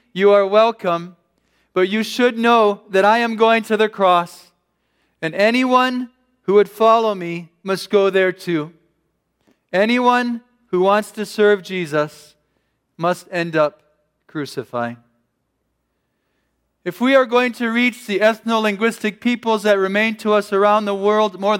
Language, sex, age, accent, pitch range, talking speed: English, male, 40-59, American, 185-225 Hz, 140 wpm